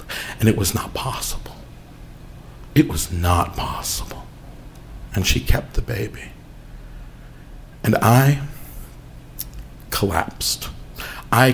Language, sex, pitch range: English, male, 95-125 Hz